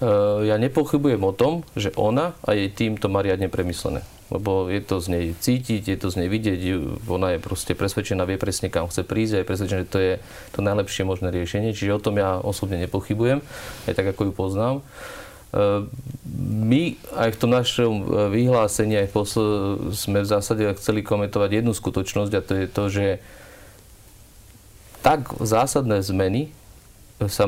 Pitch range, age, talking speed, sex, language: 95-110 Hz, 40-59, 170 wpm, male, Slovak